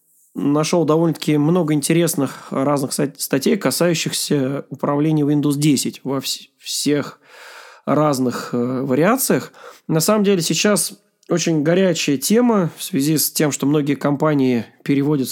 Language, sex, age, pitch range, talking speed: Russian, male, 20-39, 140-185 Hz, 115 wpm